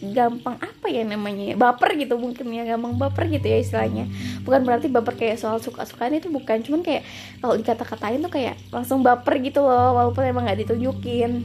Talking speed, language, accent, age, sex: 195 wpm, Indonesian, native, 20-39, female